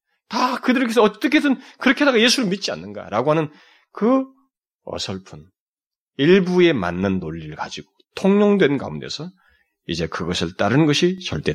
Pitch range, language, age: 150-230 Hz, Korean, 30-49